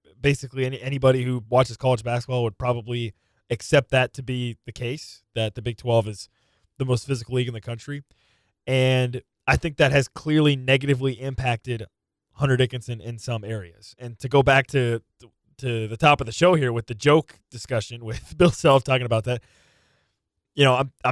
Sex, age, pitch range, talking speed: male, 20-39, 115-140 Hz, 190 wpm